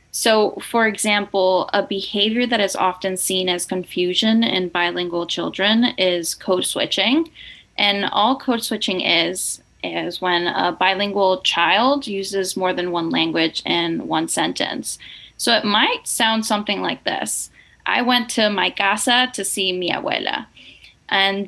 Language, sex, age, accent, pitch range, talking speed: English, female, 10-29, American, 185-230 Hz, 145 wpm